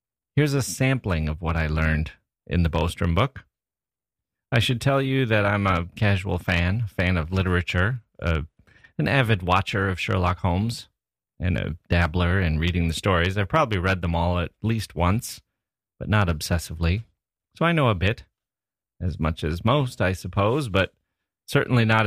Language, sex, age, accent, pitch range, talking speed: English, male, 30-49, American, 85-110 Hz, 170 wpm